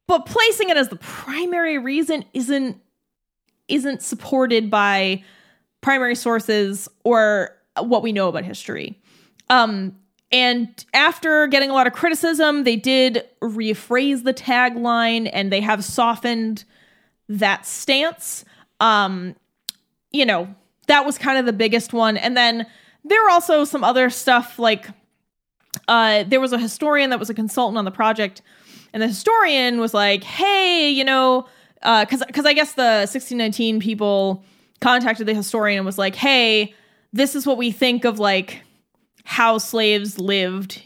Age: 20-39